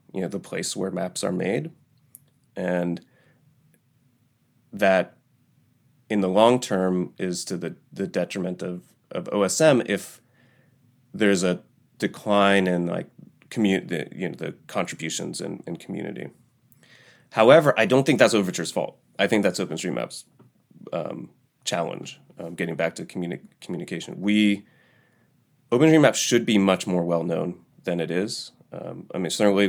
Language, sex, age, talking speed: English, male, 30-49, 140 wpm